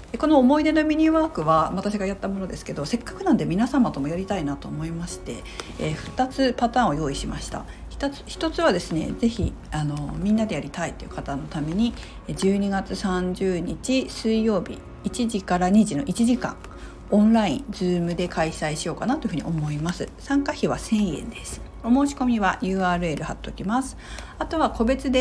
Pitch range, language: 165-245 Hz, Japanese